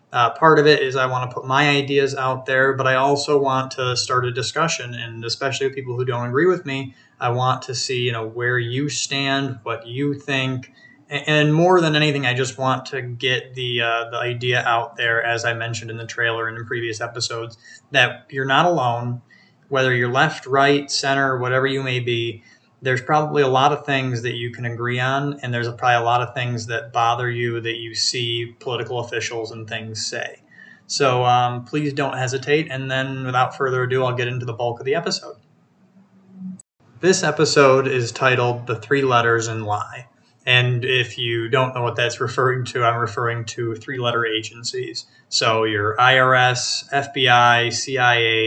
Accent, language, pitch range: American, English, 120-135 Hz